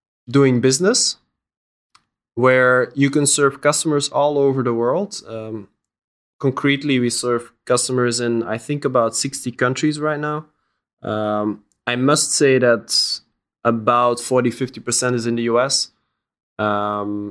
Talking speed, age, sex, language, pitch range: 125 wpm, 20-39, male, English, 110-130 Hz